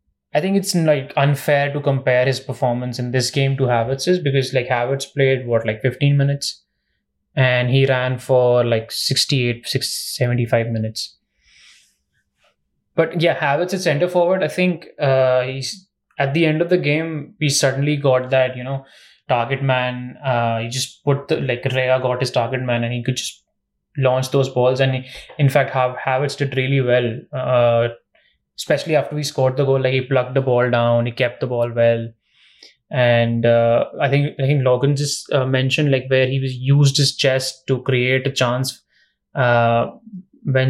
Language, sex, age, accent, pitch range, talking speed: English, male, 20-39, Indian, 125-140 Hz, 180 wpm